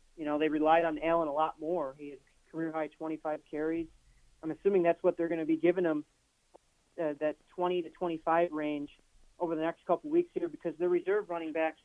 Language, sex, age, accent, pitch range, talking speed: English, male, 30-49, American, 150-170 Hz, 215 wpm